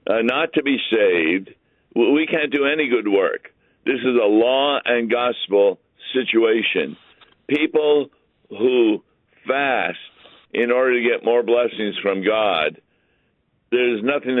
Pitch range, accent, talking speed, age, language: 110-150 Hz, American, 130 wpm, 60-79, English